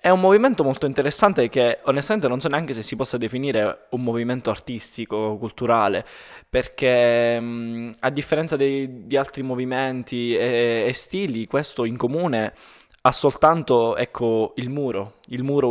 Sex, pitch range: male, 110-135 Hz